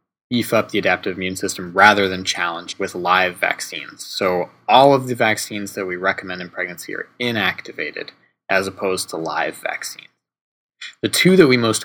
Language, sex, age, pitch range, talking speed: English, male, 20-39, 100-125 Hz, 170 wpm